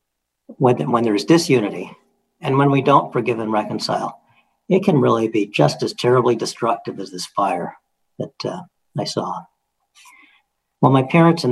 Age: 50-69